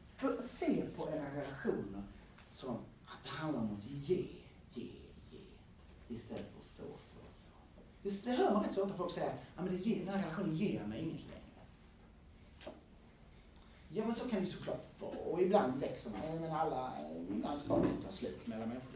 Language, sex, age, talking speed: Swedish, male, 30-49, 175 wpm